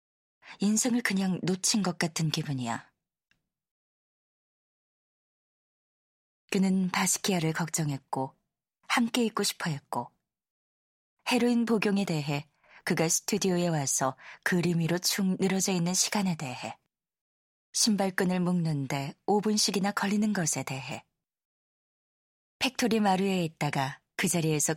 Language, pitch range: Korean, 155-205 Hz